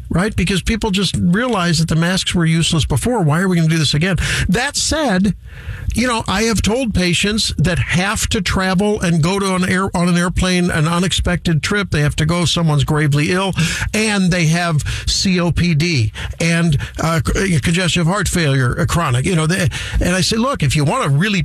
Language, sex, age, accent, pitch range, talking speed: English, male, 50-69, American, 135-180 Hz, 200 wpm